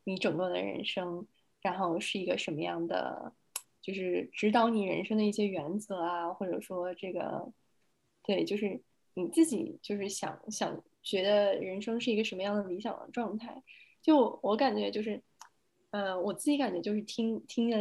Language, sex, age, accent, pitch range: Chinese, female, 10-29, native, 180-225 Hz